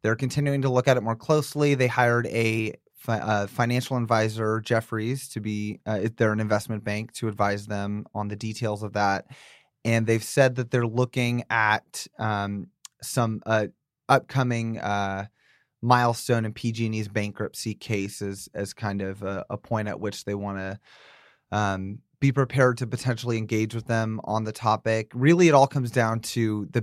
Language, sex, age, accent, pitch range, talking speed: English, male, 30-49, American, 105-120 Hz, 165 wpm